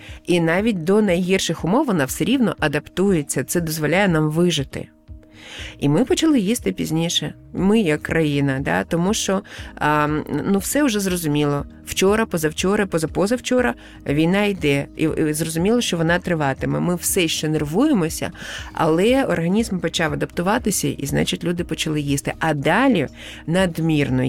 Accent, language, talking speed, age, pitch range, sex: native, Ukrainian, 140 wpm, 30-49, 150-205 Hz, female